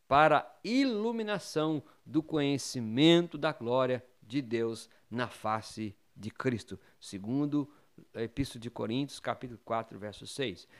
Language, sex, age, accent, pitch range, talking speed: Portuguese, male, 50-69, Brazilian, 120-160 Hz, 115 wpm